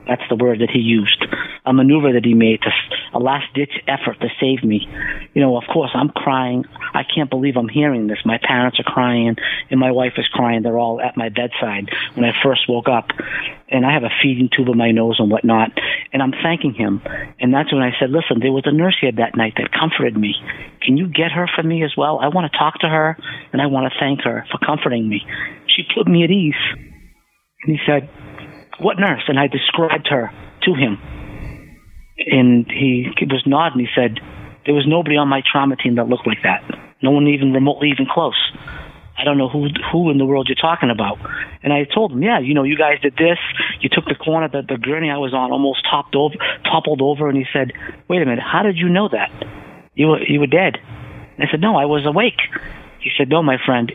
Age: 50-69